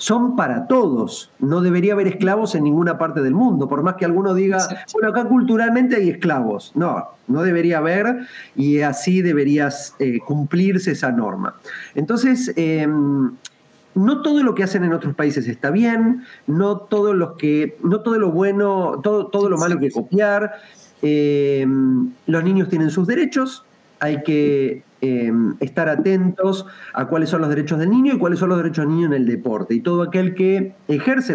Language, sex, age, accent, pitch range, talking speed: Spanish, male, 40-59, Argentinian, 140-195 Hz, 175 wpm